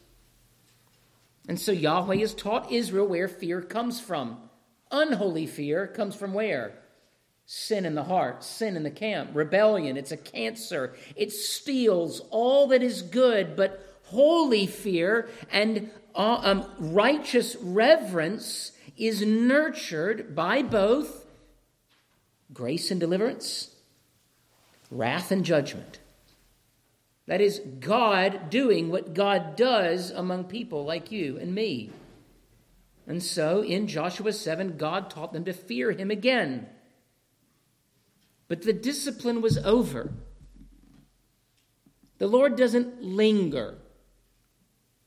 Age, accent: 50-69, American